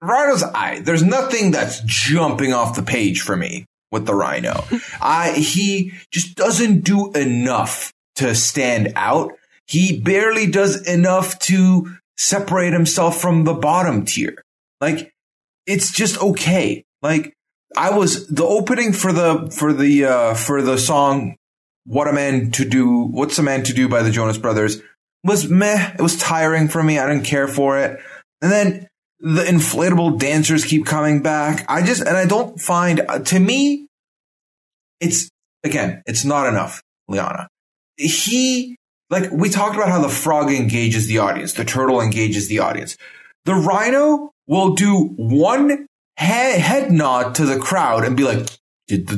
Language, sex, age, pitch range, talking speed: English, male, 30-49, 130-185 Hz, 160 wpm